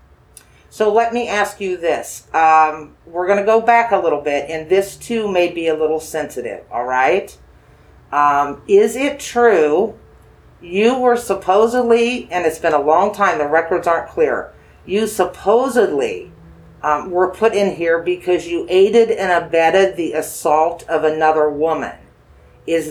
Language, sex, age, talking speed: English, female, 50-69, 155 wpm